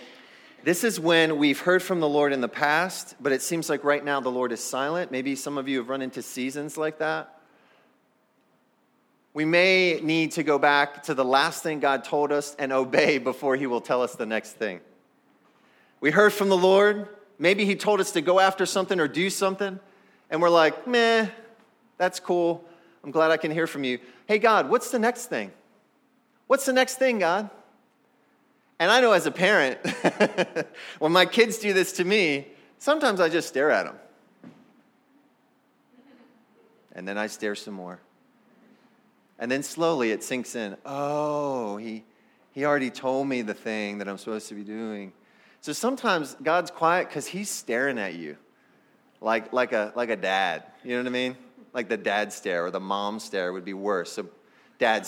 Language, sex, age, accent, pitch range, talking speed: English, male, 30-49, American, 130-200 Hz, 185 wpm